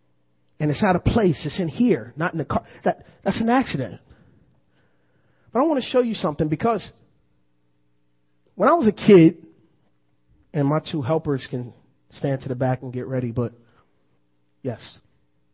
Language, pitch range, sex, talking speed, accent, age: English, 115-180 Hz, male, 165 wpm, American, 30-49